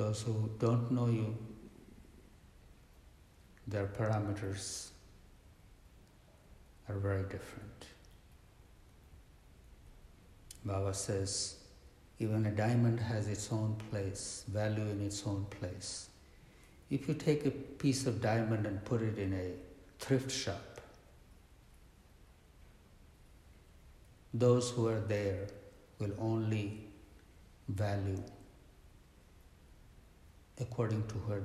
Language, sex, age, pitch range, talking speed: English, male, 60-79, 95-110 Hz, 90 wpm